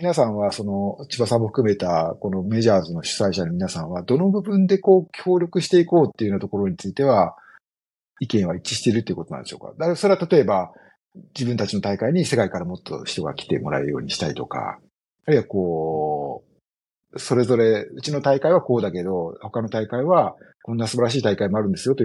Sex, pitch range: male, 100-150 Hz